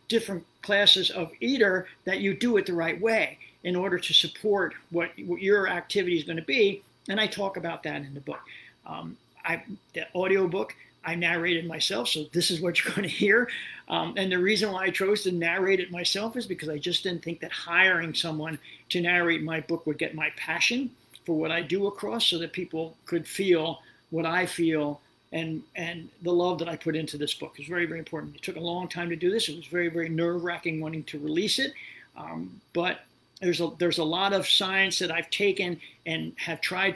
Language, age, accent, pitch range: English, 50-69, American, 165-190 Hz